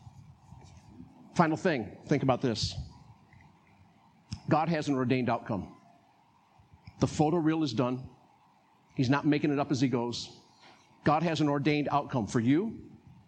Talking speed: 135 wpm